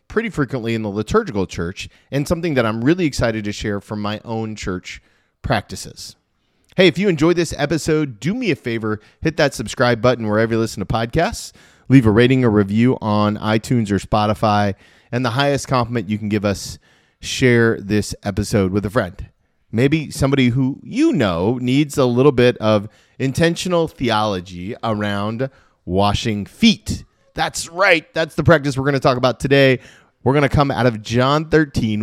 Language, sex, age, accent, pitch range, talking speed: English, male, 30-49, American, 105-140 Hz, 180 wpm